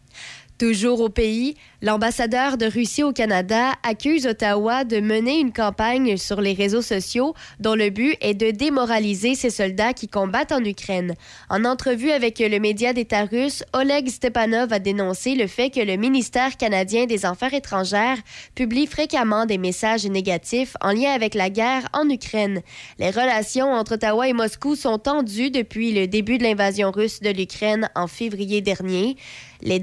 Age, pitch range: 20-39, 205-245 Hz